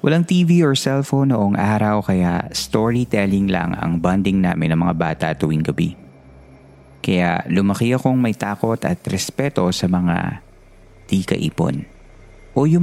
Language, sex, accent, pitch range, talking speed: Filipino, male, native, 90-125 Hz, 140 wpm